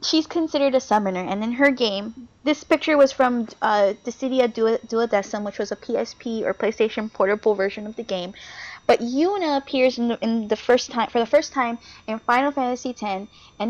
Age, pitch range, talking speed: 20-39, 205-255 Hz, 195 wpm